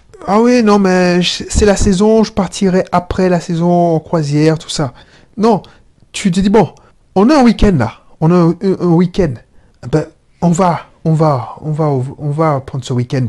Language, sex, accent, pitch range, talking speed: French, male, French, 155-200 Hz, 215 wpm